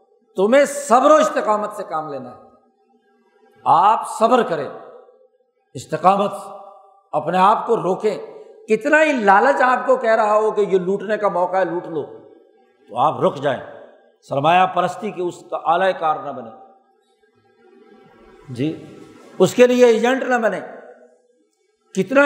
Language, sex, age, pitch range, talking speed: Urdu, male, 60-79, 185-285 Hz, 140 wpm